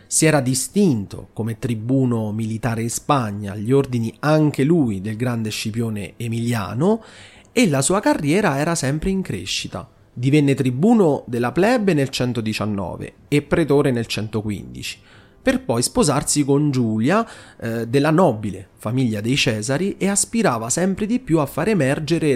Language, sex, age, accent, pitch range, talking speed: Italian, male, 30-49, native, 115-155 Hz, 140 wpm